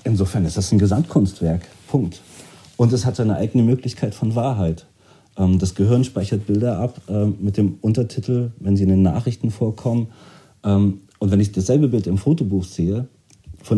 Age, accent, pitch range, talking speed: 40-59, German, 95-125 Hz, 160 wpm